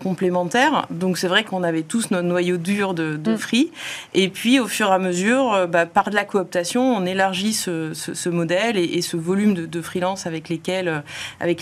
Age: 30-49